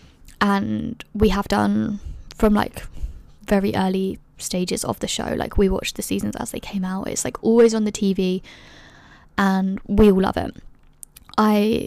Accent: British